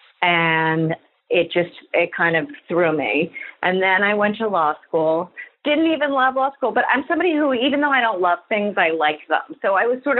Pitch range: 170-220 Hz